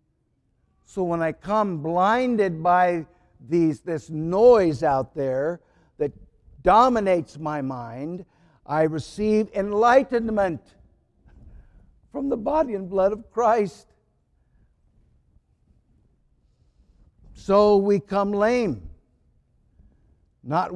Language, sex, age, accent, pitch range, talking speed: English, male, 60-79, American, 140-195 Hz, 85 wpm